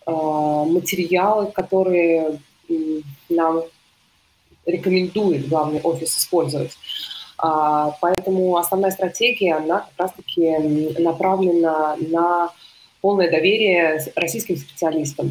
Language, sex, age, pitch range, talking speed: Russian, female, 20-39, 155-185 Hz, 80 wpm